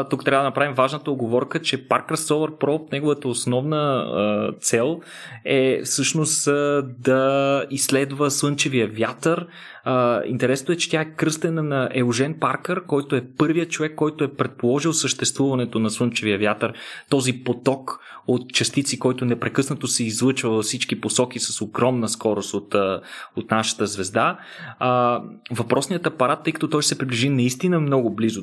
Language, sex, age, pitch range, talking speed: Bulgarian, male, 20-39, 115-145 Hz, 150 wpm